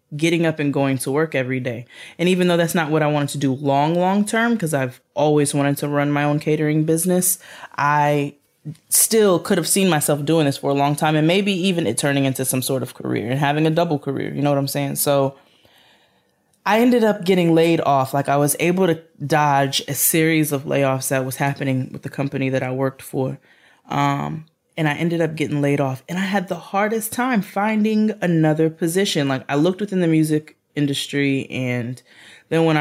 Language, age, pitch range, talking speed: English, 20-39, 135-160 Hz, 215 wpm